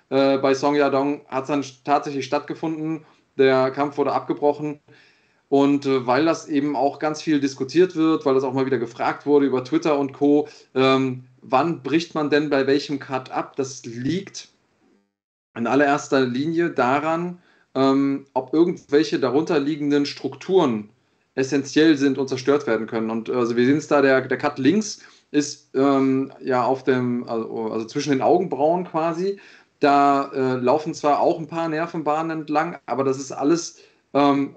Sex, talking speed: male, 160 wpm